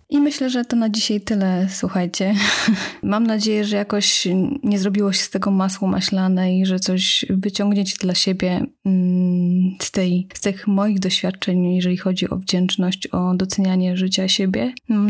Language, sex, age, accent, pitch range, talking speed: Polish, female, 20-39, native, 185-210 Hz, 155 wpm